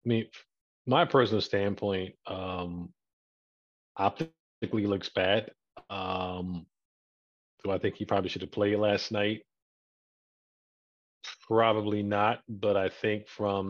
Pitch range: 90-105 Hz